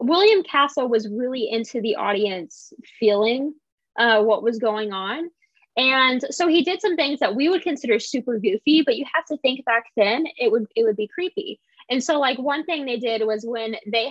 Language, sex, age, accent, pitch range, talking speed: English, female, 20-39, American, 215-275 Hz, 205 wpm